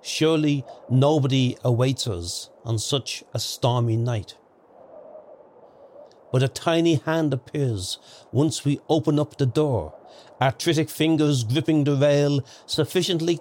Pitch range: 120-150 Hz